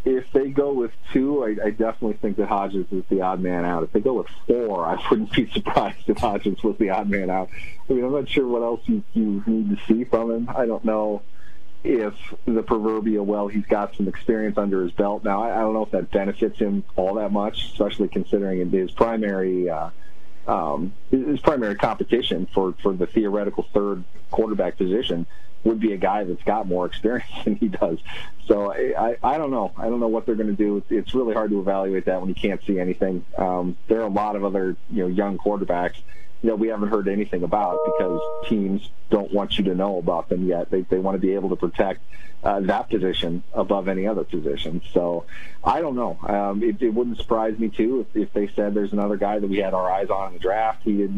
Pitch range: 90-110 Hz